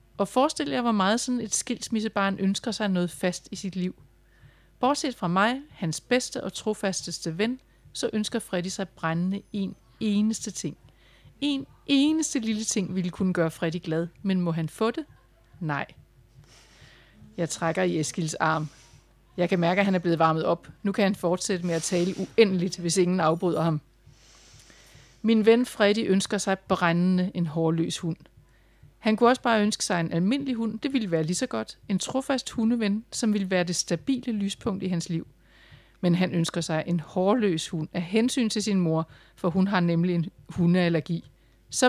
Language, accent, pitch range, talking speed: Danish, native, 165-215 Hz, 180 wpm